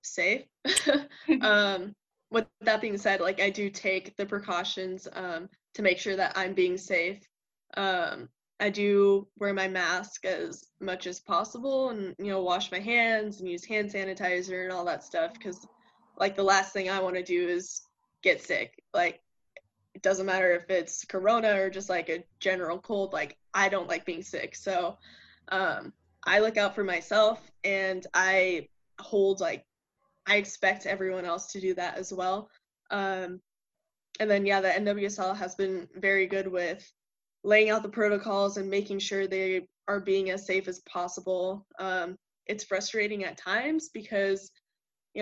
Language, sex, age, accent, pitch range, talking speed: English, female, 10-29, American, 185-205 Hz, 170 wpm